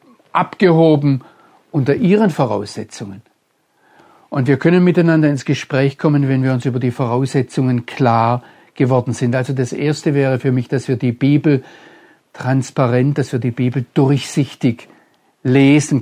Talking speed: 140 wpm